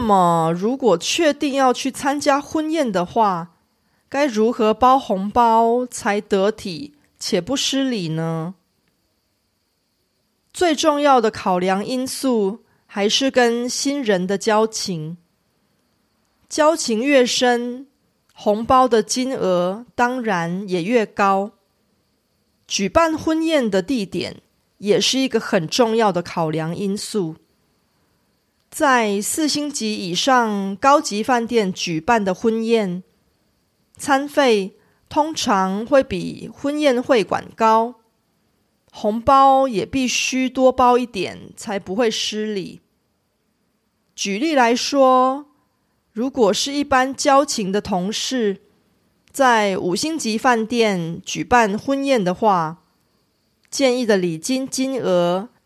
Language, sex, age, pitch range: Korean, female, 30-49, 195-265 Hz